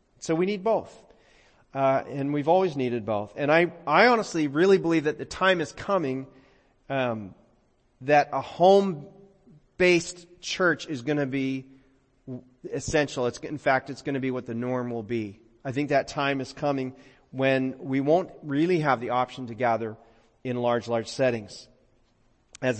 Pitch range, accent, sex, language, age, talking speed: 130-165 Hz, American, male, English, 40-59, 165 wpm